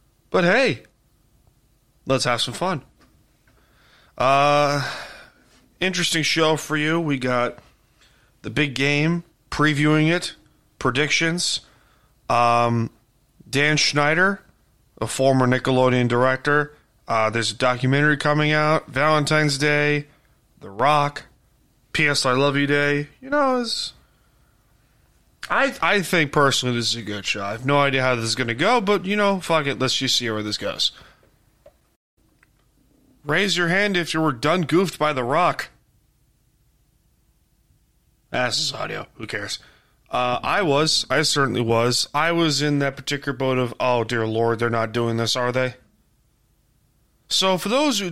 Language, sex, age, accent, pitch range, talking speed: English, male, 30-49, American, 125-160 Hz, 145 wpm